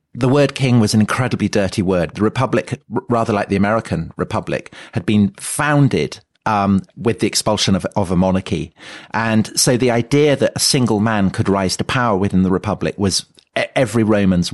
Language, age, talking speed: English, 40-59, 180 wpm